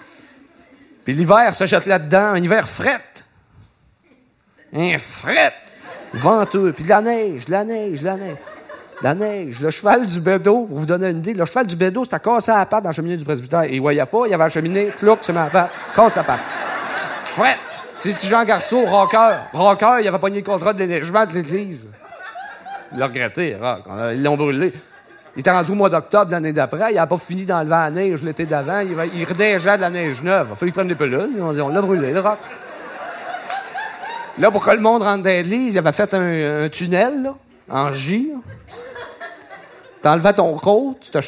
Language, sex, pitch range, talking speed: French, male, 165-210 Hz, 210 wpm